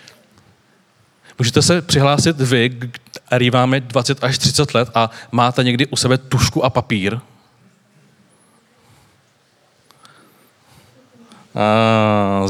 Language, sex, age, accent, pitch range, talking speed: Czech, male, 30-49, native, 115-135 Hz, 90 wpm